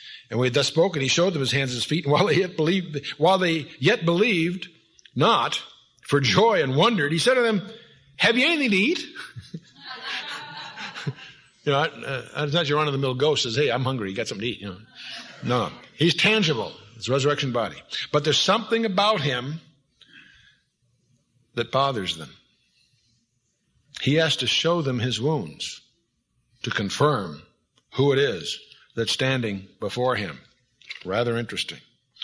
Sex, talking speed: male, 160 wpm